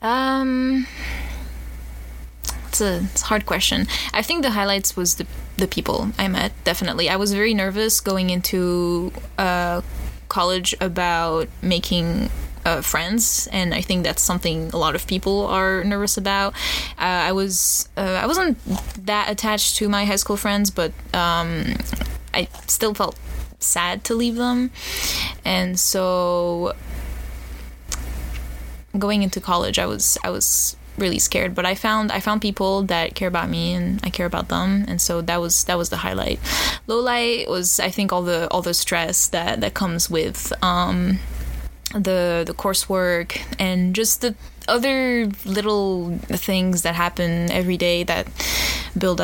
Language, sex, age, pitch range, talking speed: English, female, 10-29, 170-205 Hz, 155 wpm